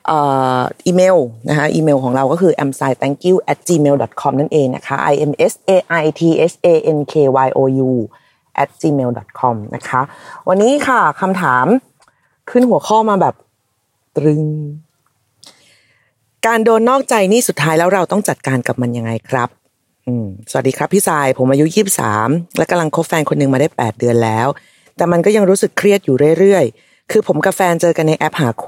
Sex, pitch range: female, 135-185 Hz